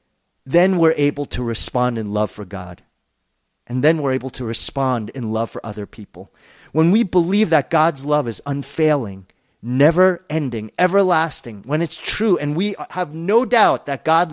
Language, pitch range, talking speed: English, 115-165 Hz, 170 wpm